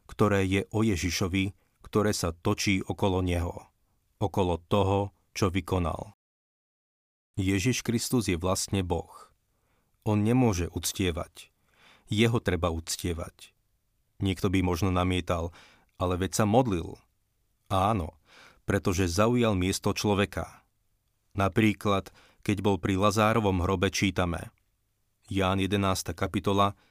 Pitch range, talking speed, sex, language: 95-105 Hz, 105 wpm, male, Slovak